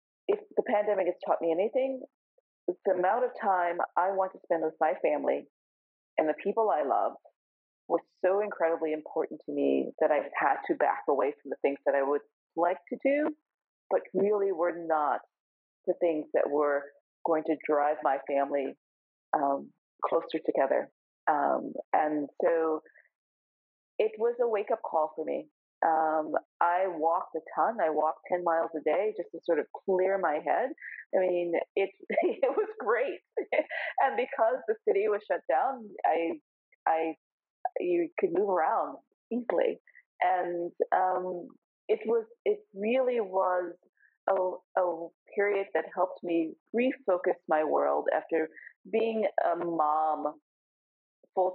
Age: 40-59